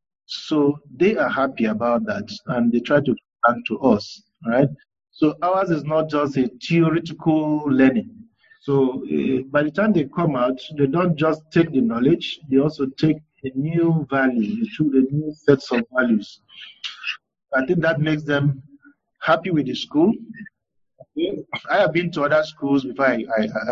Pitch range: 115-165 Hz